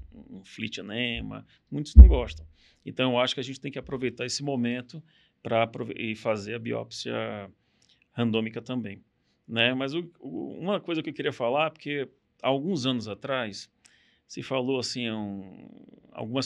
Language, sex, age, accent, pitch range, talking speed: Portuguese, male, 40-59, Brazilian, 110-135 Hz, 140 wpm